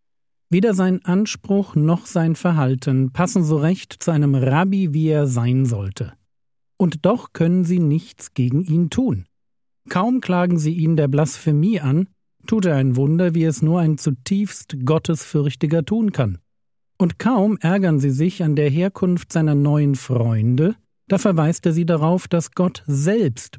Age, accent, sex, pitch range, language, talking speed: 50-69, German, male, 140-185 Hz, German, 160 wpm